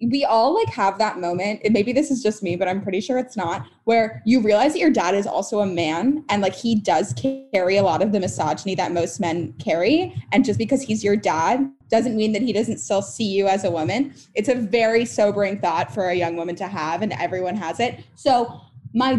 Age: 10-29